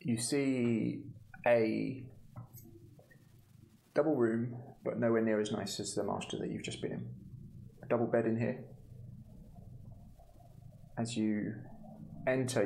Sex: male